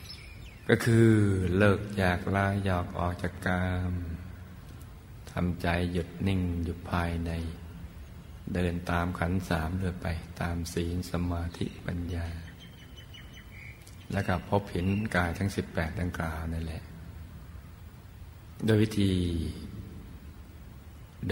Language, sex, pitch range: Thai, male, 85-100 Hz